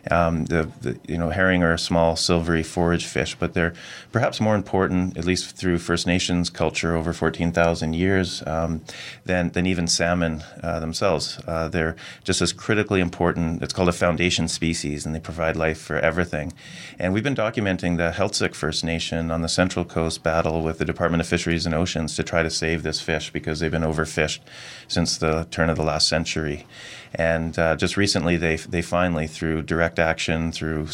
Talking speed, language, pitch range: 190 wpm, English, 80-90 Hz